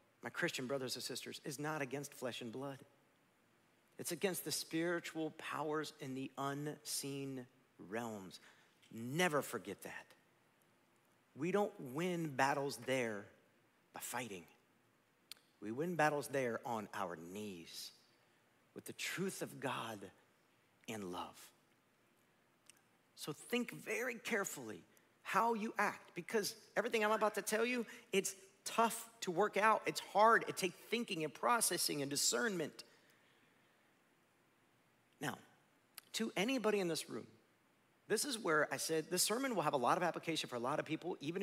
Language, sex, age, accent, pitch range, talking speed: English, male, 50-69, American, 130-195 Hz, 140 wpm